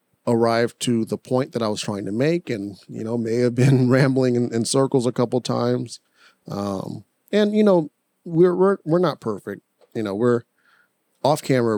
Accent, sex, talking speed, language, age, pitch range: American, male, 190 wpm, English, 30-49, 105-125 Hz